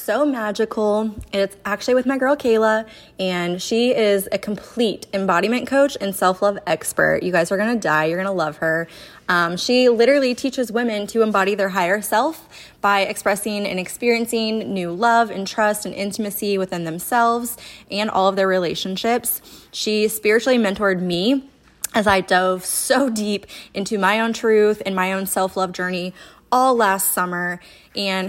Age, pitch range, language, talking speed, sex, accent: 20-39, 195-235 Hz, English, 165 wpm, female, American